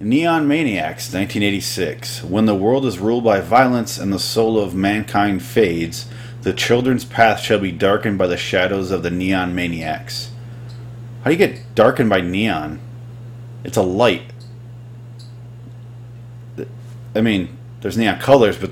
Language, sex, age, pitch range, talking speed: English, male, 30-49, 100-120 Hz, 145 wpm